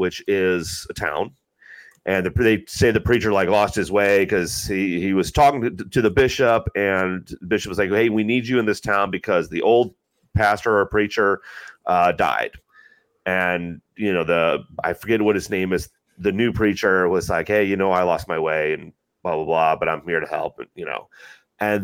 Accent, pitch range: American, 90-110 Hz